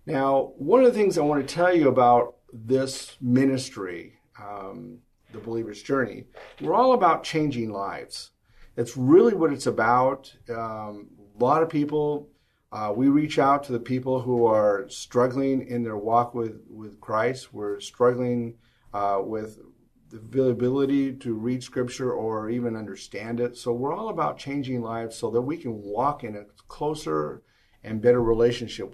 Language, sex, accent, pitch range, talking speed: English, male, American, 115-135 Hz, 160 wpm